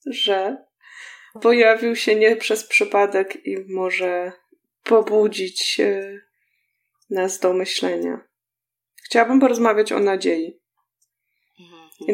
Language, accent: Polish, native